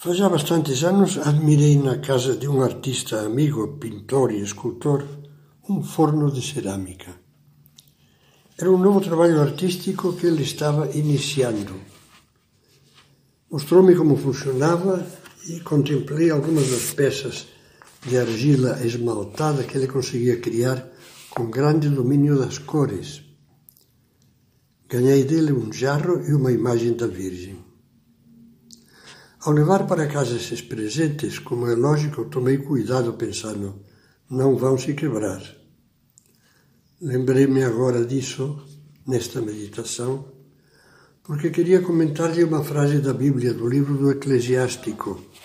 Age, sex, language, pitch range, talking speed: 60-79, male, Portuguese, 120-150 Hz, 115 wpm